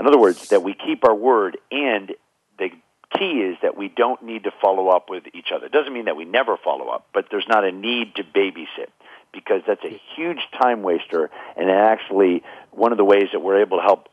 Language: English